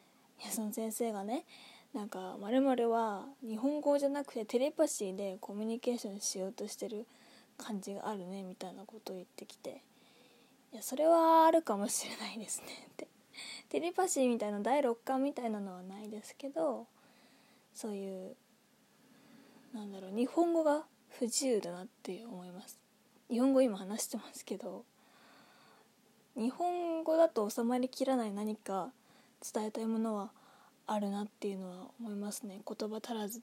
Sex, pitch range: female, 215-265 Hz